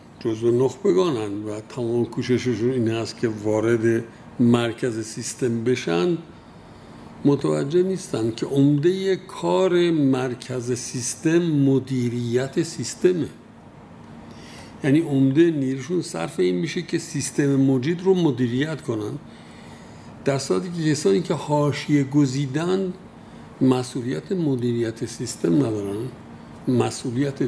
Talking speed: 100 wpm